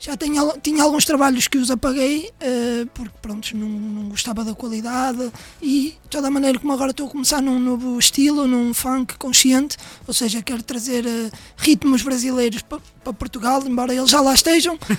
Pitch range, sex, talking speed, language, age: 250-295 Hz, male, 190 wpm, French, 20-39